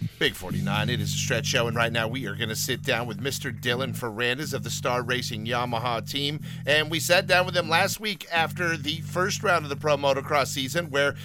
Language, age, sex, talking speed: English, 40-59, male, 235 wpm